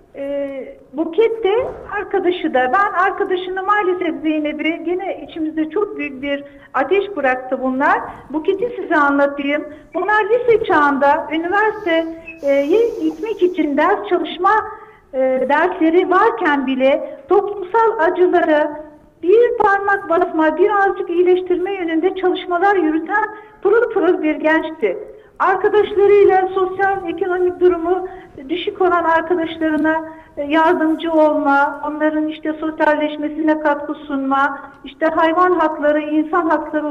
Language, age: English, 60-79